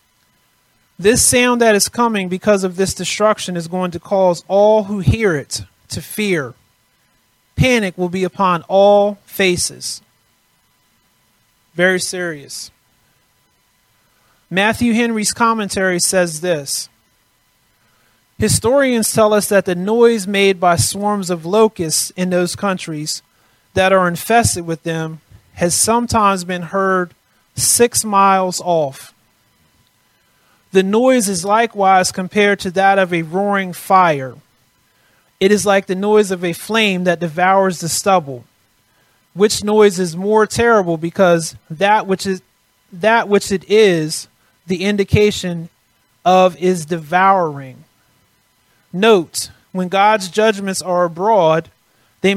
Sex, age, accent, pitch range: male, 30-49, American, 165-200 Hz